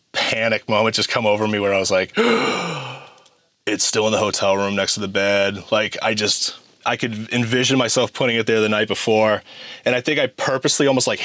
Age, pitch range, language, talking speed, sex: 30-49, 105-125 Hz, English, 215 wpm, male